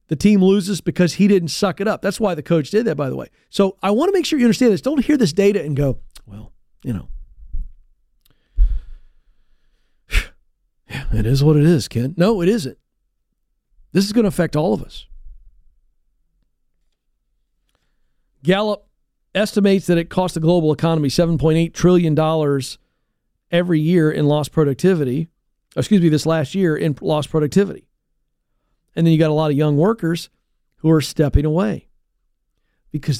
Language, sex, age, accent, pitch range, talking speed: English, male, 50-69, American, 145-200 Hz, 165 wpm